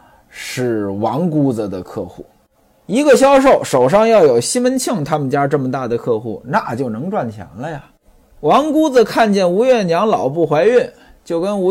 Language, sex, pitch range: Chinese, male, 150-250 Hz